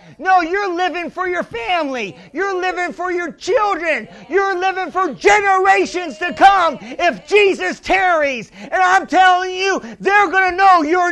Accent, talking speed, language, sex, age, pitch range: American, 155 wpm, English, male, 40-59, 315-370 Hz